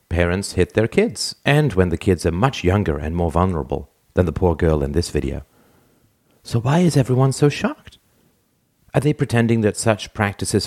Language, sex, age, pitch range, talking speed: English, male, 50-69, 80-115 Hz, 185 wpm